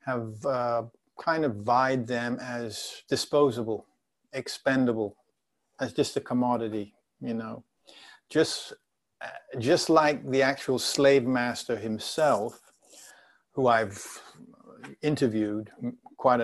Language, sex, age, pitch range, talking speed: English, male, 50-69, 120-140 Hz, 100 wpm